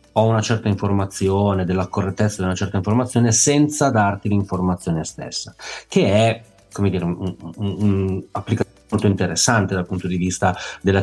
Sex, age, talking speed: male, 30-49, 150 wpm